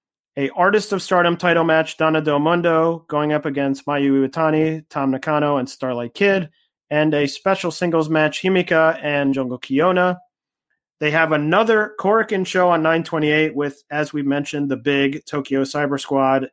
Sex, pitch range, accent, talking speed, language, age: male, 140-175 Hz, American, 160 wpm, English, 30-49